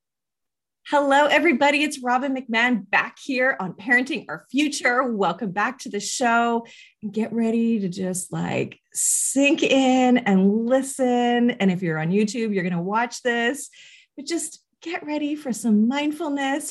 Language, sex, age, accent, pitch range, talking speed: English, female, 30-49, American, 185-265 Hz, 150 wpm